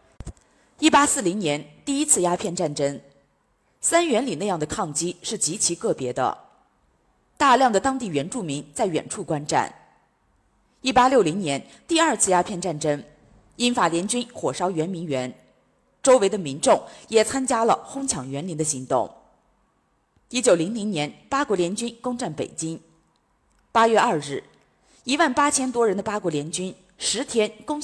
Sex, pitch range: female, 165-265 Hz